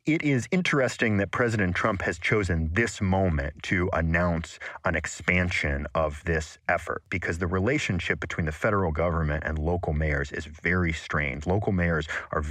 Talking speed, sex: 160 wpm, male